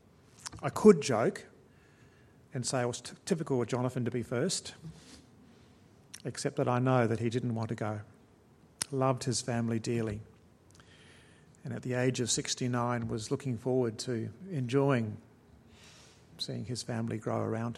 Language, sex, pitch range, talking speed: English, male, 120-135 Hz, 145 wpm